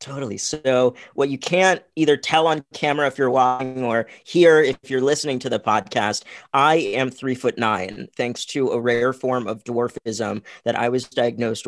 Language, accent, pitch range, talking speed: English, American, 120-145 Hz, 185 wpm